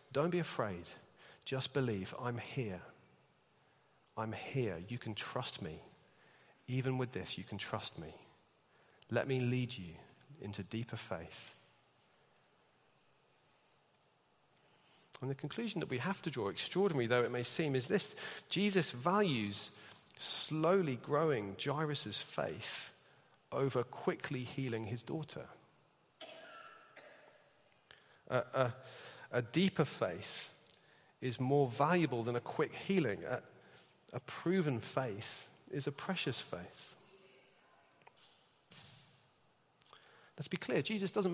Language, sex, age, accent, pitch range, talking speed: English, male, 40-59, British, 120-170 Hz, 115 wpm